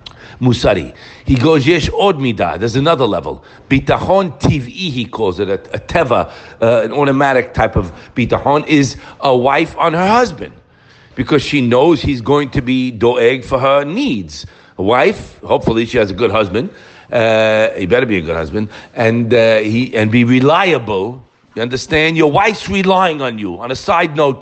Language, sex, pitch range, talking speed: English, male, 125-175 Hz, 175 wpm